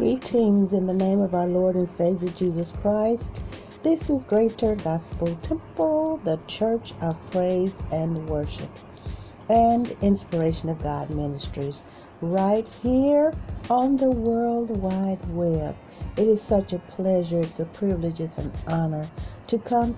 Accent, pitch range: American, 160-220 Hz